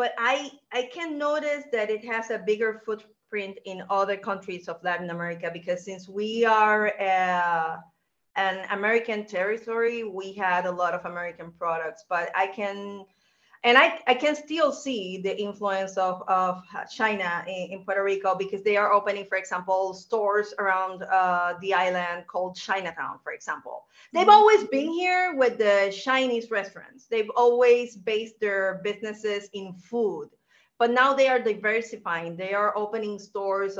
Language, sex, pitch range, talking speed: English, female, 185-230 Hz, 155 wpm